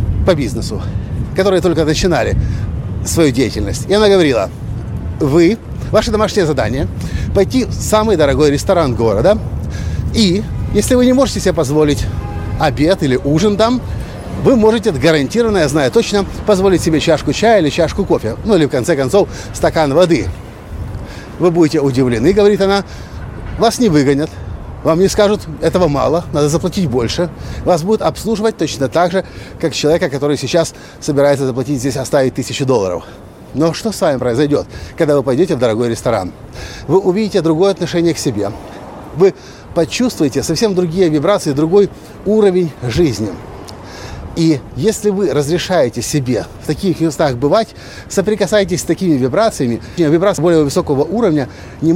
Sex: male